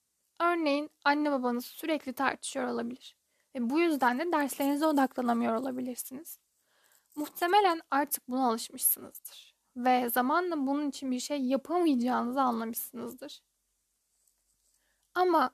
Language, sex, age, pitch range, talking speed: Turkish, female, 10-29, 255-310 Hz, 100 wpm